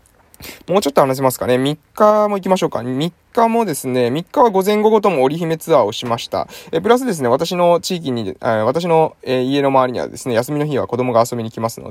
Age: 20-39